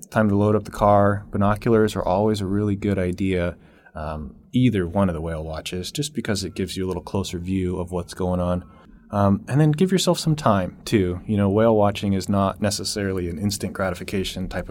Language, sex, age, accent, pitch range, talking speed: English, male, 20-39, American, 90-115 Hz, 210 wpm